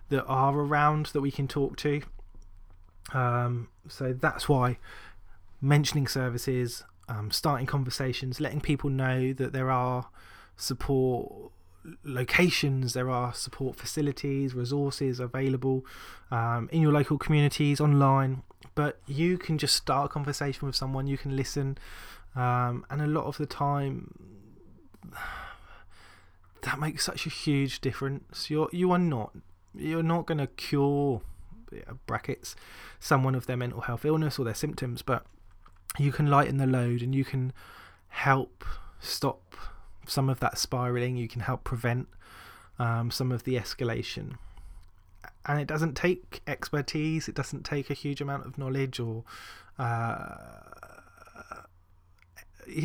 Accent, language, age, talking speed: British, English, 20-39, 135 wpm